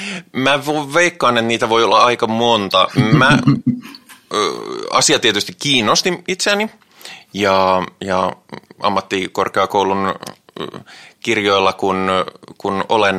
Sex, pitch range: male, 95-120 Hz